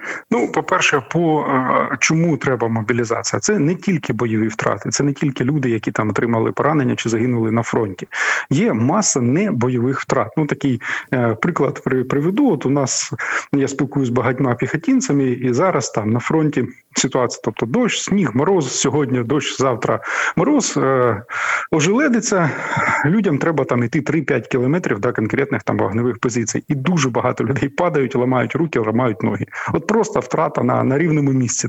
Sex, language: male, Ukrainian